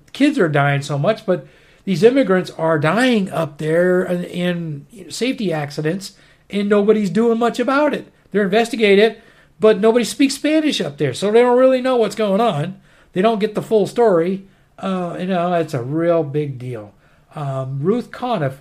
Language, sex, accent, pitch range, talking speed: English, male, American, 165-215 Hz, 175 wpm